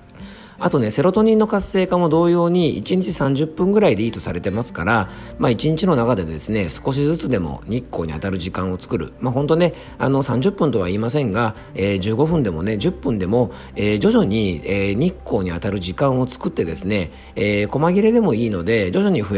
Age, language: 40-59, Japanese